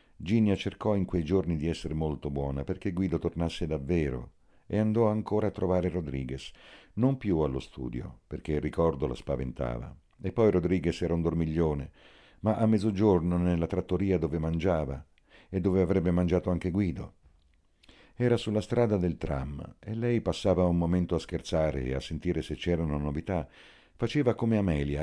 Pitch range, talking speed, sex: 75-95 Hz, 165 wpm, male